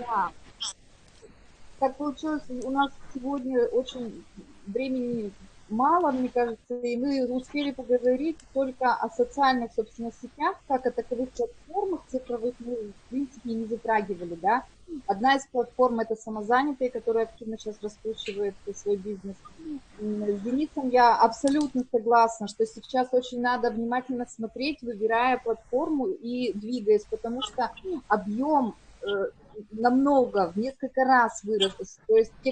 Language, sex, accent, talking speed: Russian, female, native, 125 wpm